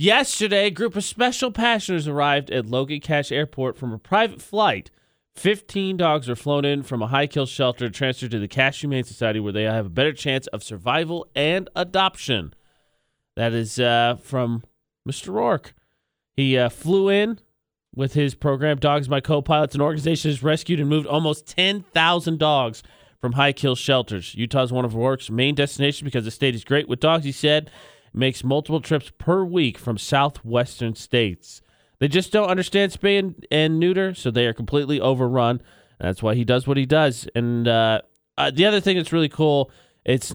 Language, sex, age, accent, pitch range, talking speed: English, male, 30-49, American, 125-160 Hz, 185 wpm